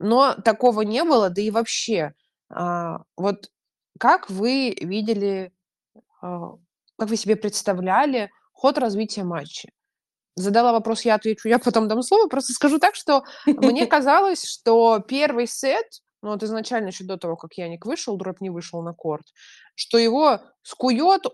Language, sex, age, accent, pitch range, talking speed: Russian, female, 20-39, native, 190-245 Hz, 150 wpm